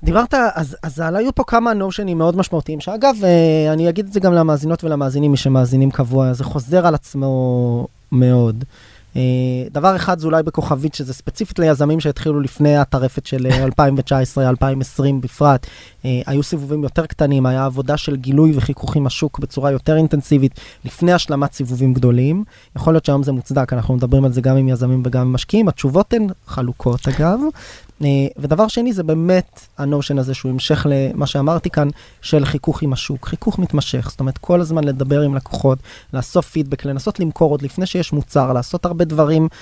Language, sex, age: Hebrew, male, 20-39